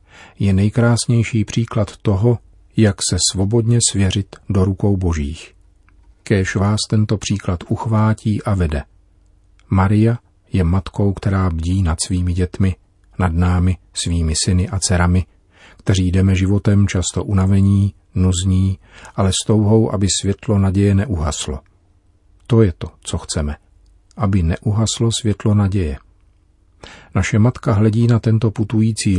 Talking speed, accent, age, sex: 125 wpm, native, 40-59, male